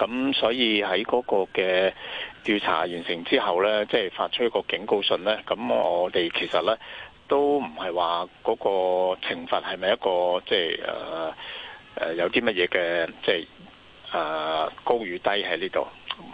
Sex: male